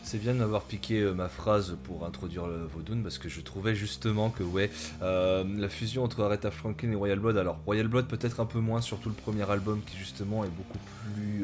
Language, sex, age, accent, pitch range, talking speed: French, male, 20-39, French, 95-125 Hz, 220 wpm